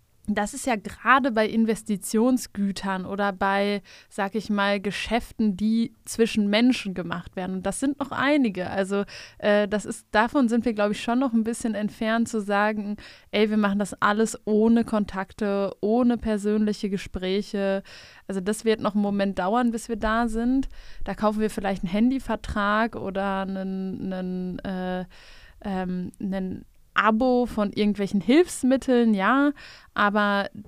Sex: female